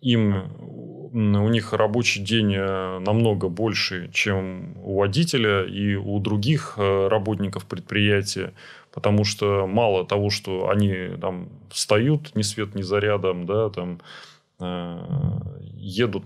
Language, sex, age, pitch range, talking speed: Russian, male, 20-39, 100-115 Hz, 110 wpm